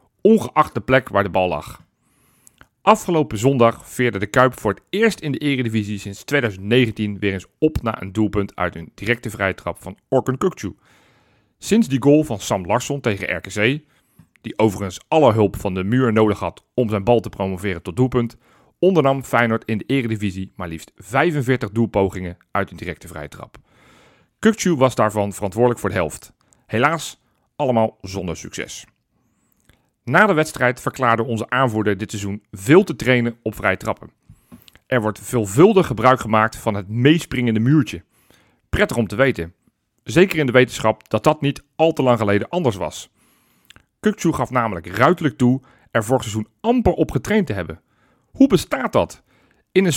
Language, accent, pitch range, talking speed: Dutch, Belgian, 105-145 Hz, 170 wpm